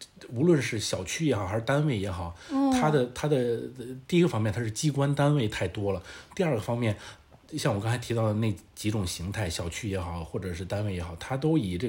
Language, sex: Chinese, male